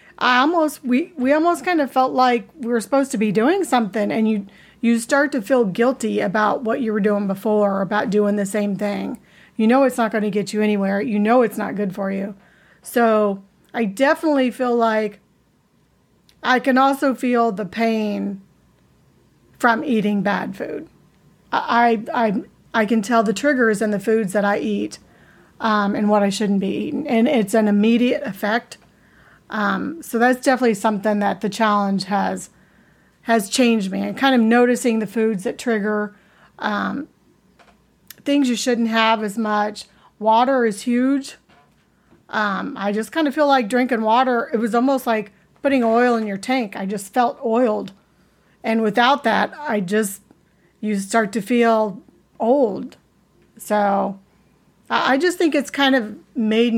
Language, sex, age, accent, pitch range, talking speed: English, female, 40-59, American, 205-245 Hz, 170 wpm